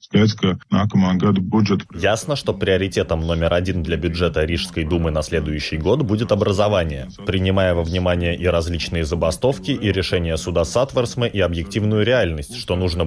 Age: 20-39